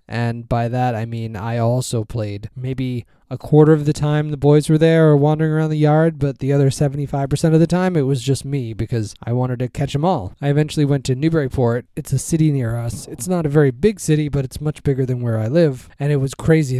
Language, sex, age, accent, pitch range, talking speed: English, male, 20-39, American, 120-150 Hz, 245 wpm